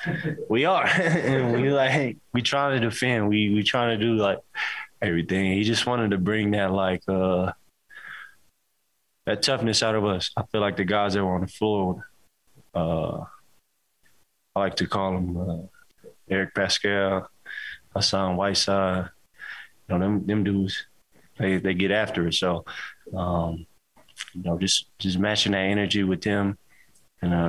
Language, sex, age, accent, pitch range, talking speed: English, male, 20-39, American, 90-105 Hz, 155 wpm